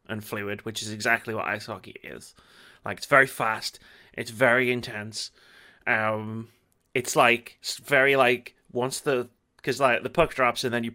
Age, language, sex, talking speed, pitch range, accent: 30-49, English, male, 175 wpm, 110-130 Hz, British